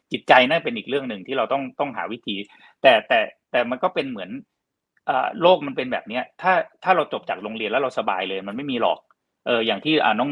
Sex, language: male, Thai